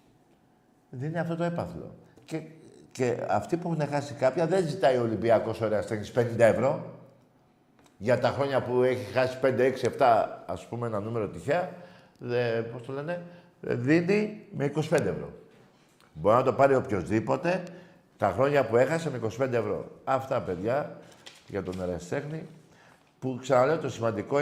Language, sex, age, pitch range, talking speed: Greek, male, 50-69, 115-150 Hz, 150 wpm